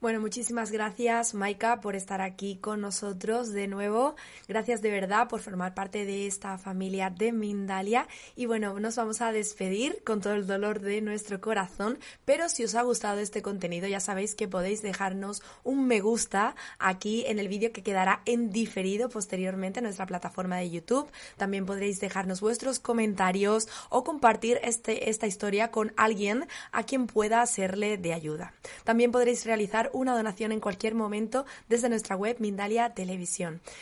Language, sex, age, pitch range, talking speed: Spanish, female, 20-39, 200-235 Hz, 170 wpm